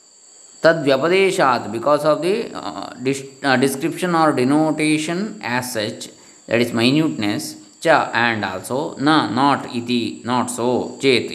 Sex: male